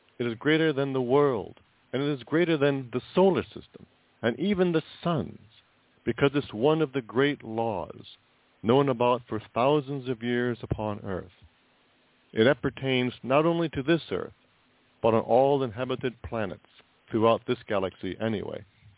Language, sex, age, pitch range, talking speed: English, male, 50-69, 110-145 Hz, 155 wpm